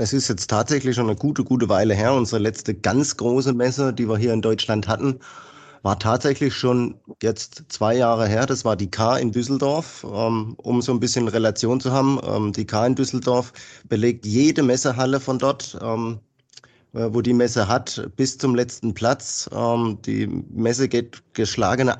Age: 30-49